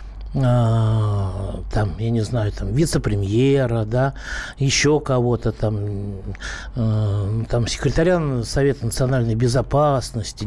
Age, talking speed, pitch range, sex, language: 60-79, 90 wpm, 115-150 Hz, male, Russian